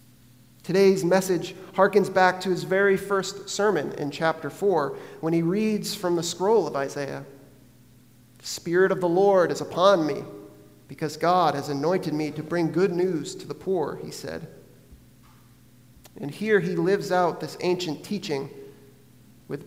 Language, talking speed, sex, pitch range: English, 155 wpm, male, 130-180 Hz